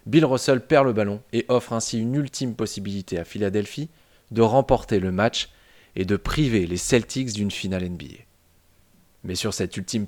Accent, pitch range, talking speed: French, 95-120 Hz, 175 wpm